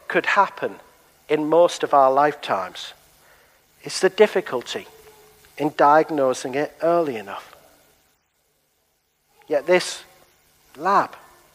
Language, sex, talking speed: English, male, 95 wpm